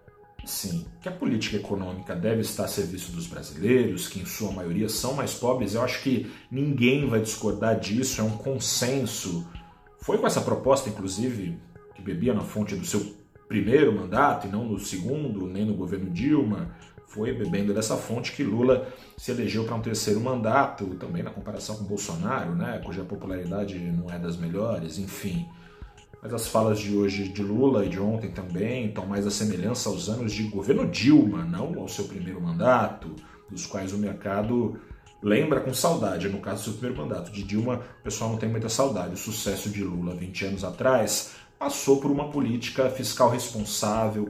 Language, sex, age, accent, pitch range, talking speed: Portuguese, male, 40-59, Brazilian, 100-125 Hz, 180 wpm